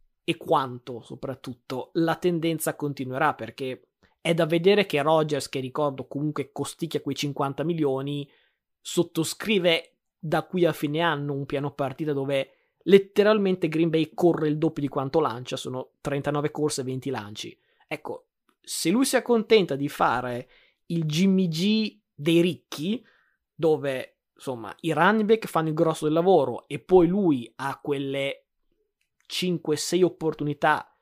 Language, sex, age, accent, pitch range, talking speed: Italian, male, 20-39, native, 145-180 Hz, 140 wpm